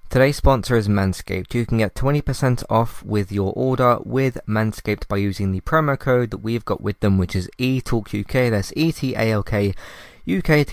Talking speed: 205 wpm